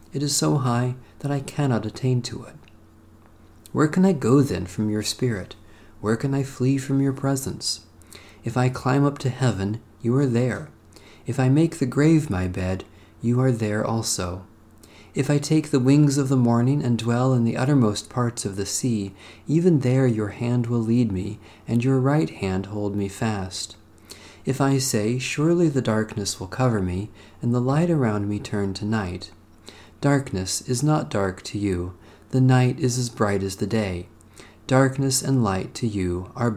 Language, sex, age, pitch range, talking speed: English, male, 40-59, 100-130 Hz, 185 wpm